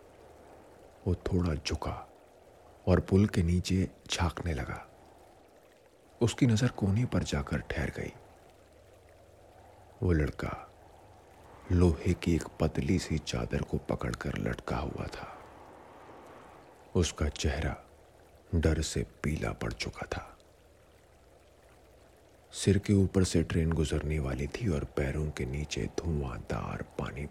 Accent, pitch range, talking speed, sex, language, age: native, 75-95 Hz, 110 wpm, male, Hindi, 50-69